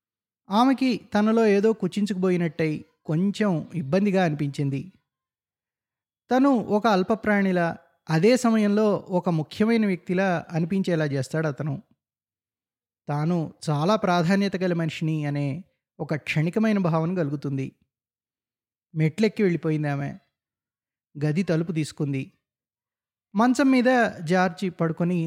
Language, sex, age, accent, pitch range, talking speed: Telugu, male, 20-39, native, 145-200 Hz, 90 wpm